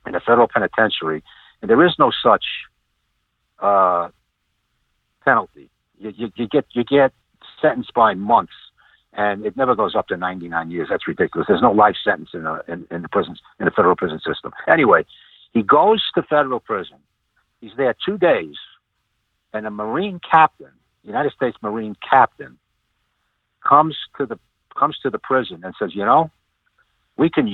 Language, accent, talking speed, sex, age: English, American, 170 wpm, male, 60-79